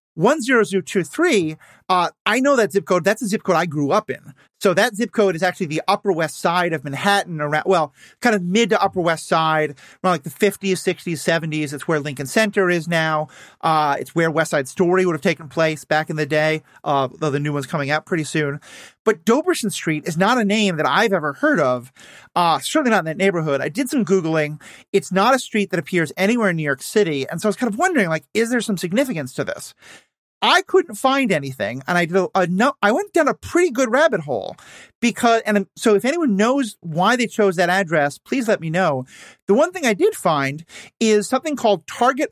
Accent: American